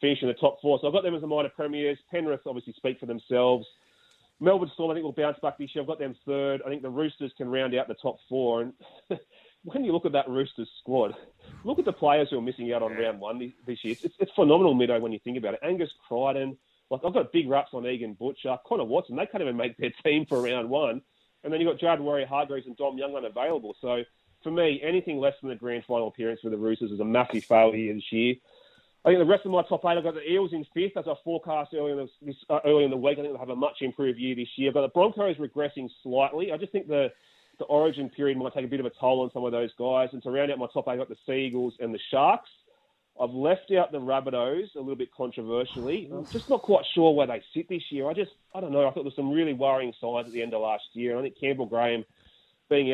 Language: English